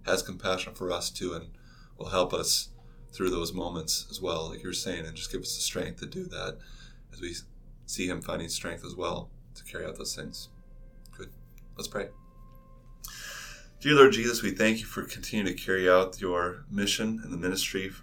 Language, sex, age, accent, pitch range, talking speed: English, male, 20-39, American, 90-105 Hz, 195 wpm